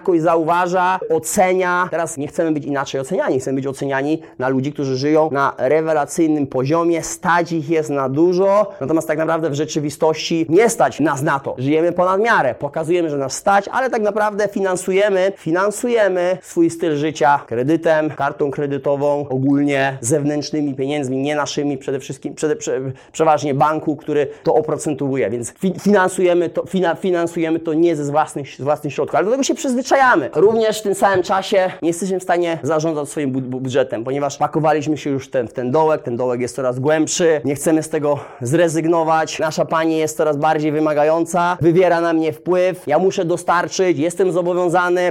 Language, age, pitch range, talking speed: Polish, 30-49, 150-185 Hz, 160 wpm